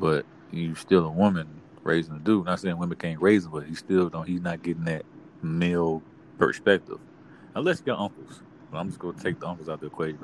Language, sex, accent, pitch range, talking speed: English, male, American, 80-110 Hz, 235 wpm